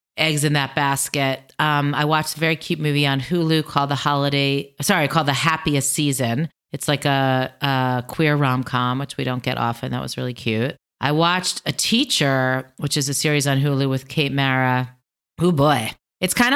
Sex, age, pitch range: female, 30-49, 130-155 Hz